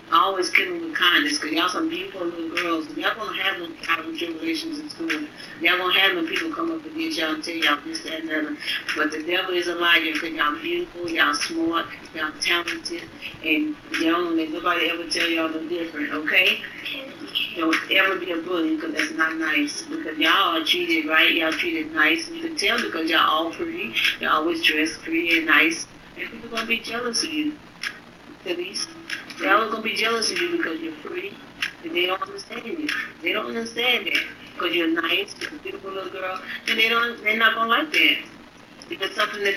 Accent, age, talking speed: American, 40-59, 230 wpm